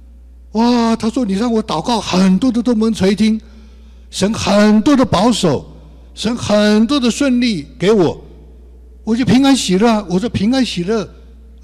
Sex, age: male, 60-79